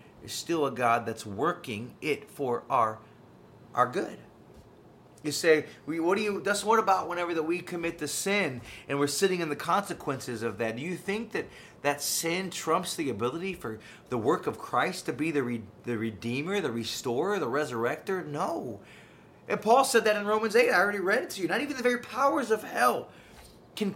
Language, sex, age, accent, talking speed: English, male, 30-49, American, 200 wpm